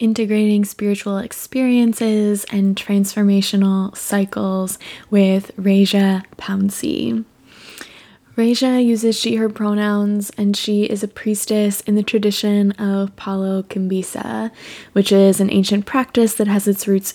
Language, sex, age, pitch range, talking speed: English, female, 20-39, 195-215 Hz, 120 wpm